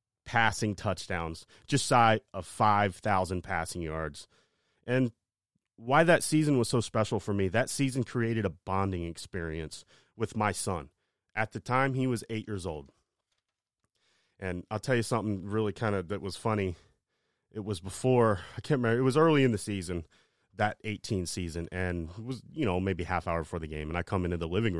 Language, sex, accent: English, male, American